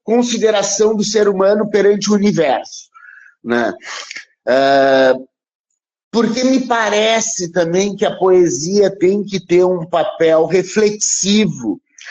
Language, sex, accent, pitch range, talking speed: Portuguese, male, Brazilian, 170-220 Hz, 105 wpm